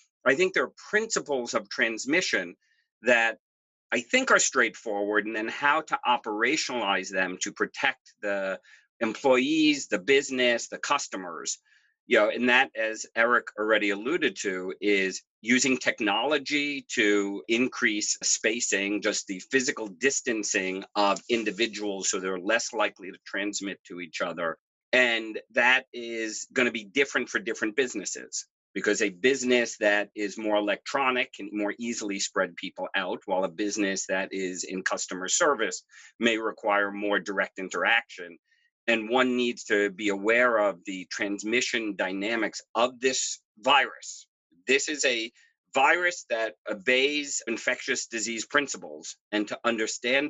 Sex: male